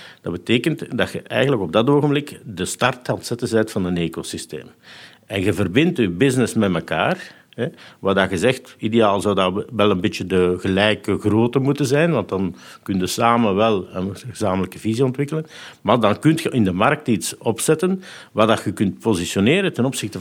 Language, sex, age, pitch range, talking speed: Dutch, male, 50-69, 100-145 Hz, 185 wpm